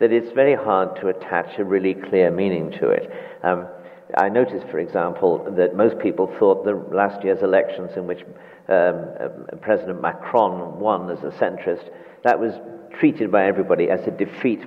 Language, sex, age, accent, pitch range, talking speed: English, male, 50-69, British, 100-140 Hz, 175 wpm